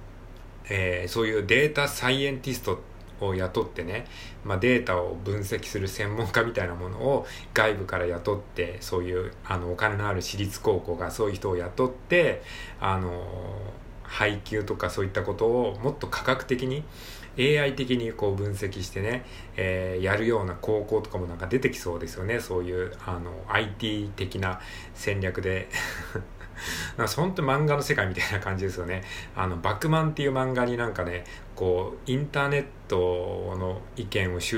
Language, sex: Japanese, male